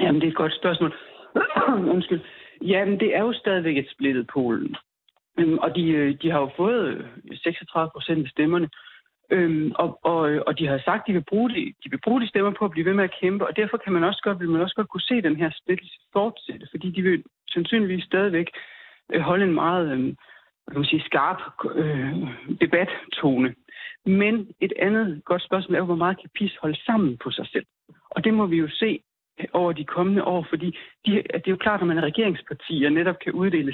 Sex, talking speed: male, 200 wpm